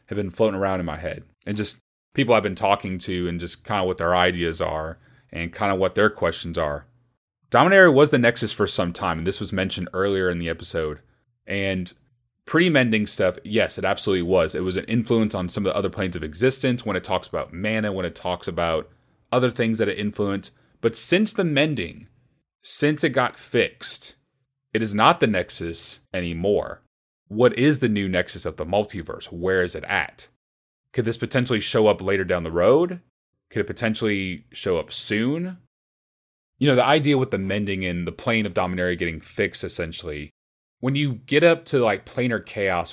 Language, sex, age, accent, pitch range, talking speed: English, male, 30-49, American, 90-125 Hz, 195 wpm